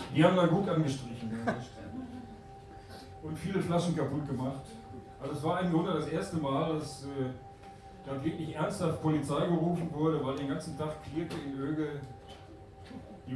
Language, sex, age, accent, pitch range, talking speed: German, male, 40-59, German, 130-160 Hz, 155 wpm